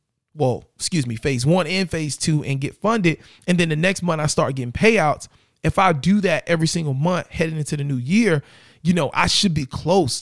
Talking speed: 225 wpm